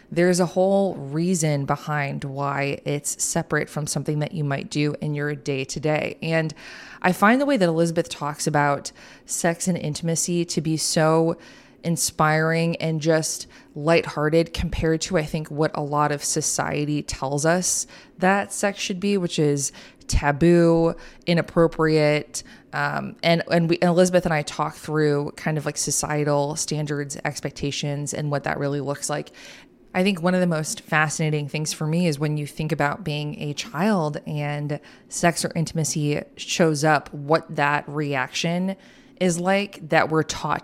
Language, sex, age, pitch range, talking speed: English, female, 20-39, 145-170 Hz, 160 wpm